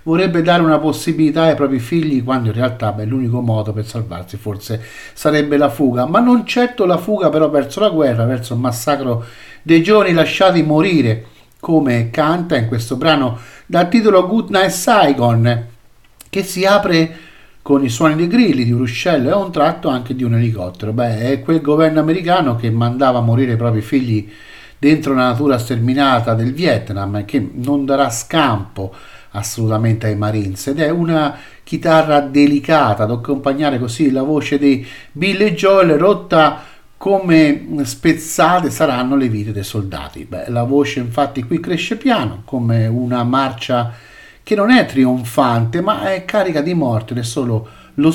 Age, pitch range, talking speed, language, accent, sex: 50-69, 120-155 Hz, 165 wpm, Italian, native, male